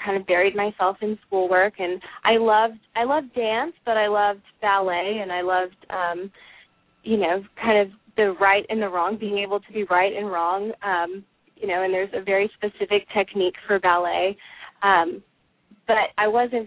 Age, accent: 20-39, American